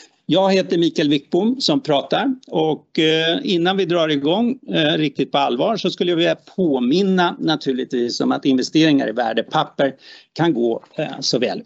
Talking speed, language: 145 wpm, Swedish